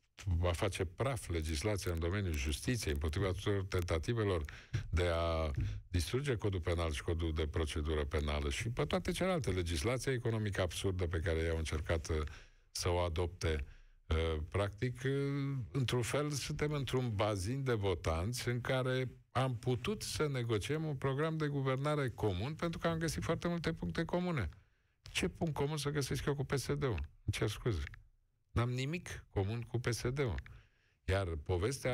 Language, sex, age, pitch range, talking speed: Romanian, male, 50-69, 85-125 Hz, 150 wpm